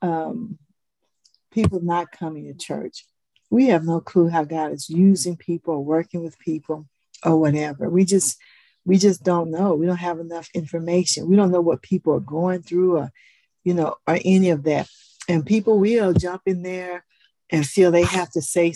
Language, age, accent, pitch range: English, 50-69, American, 160-185 Hz